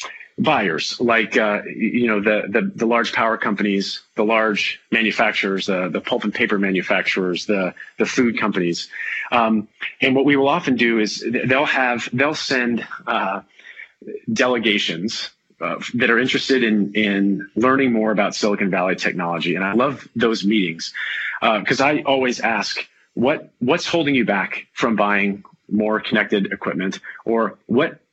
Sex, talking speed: male, 155 wpm